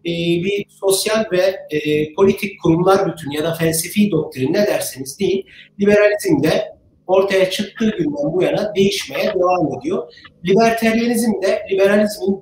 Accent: native